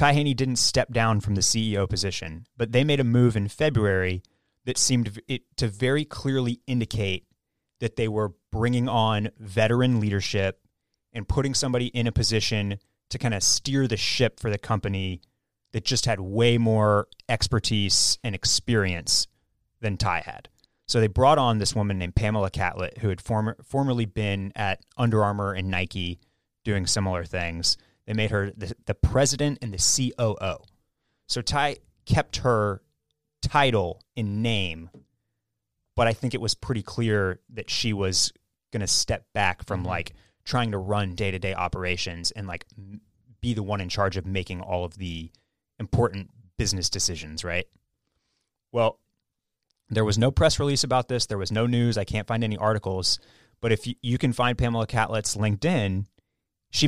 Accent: American